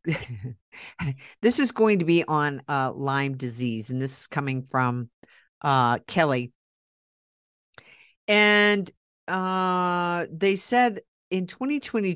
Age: 50-69